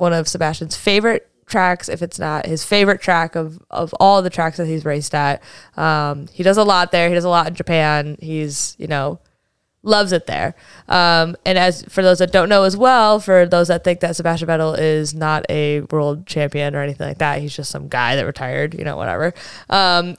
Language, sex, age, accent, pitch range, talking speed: English, female, 20-39, American, 165-215 Hz, 220 wpm